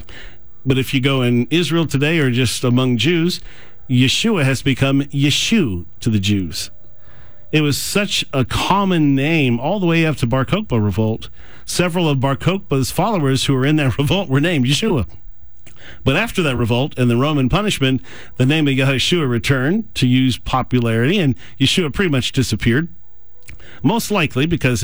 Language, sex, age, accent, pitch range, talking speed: English, male, 50-69, American, 115-155 Hz, 165 wpm